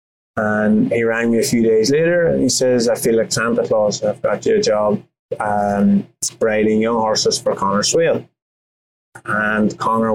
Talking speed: 175 wpm